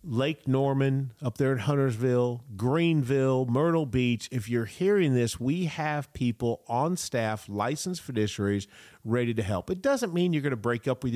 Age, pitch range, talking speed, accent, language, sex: 40-59, 120-180 Hz, 170 wpm, American, English, male